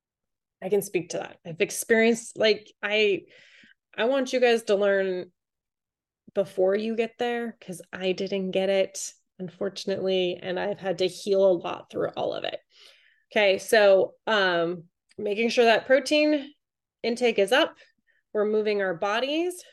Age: 20-39